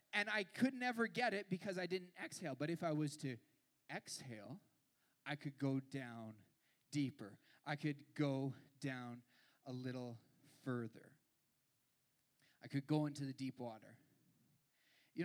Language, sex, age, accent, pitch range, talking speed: English, male, 20-39, American, 150-205 Hz, 140 wpm